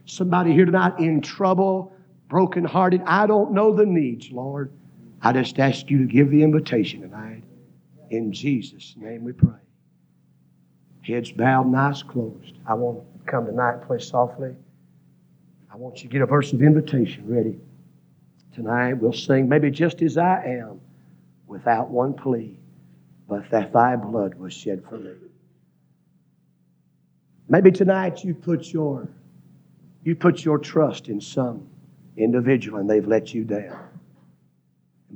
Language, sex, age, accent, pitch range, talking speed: English, male, 50-69, American, 120-165 Hz, 145 wpm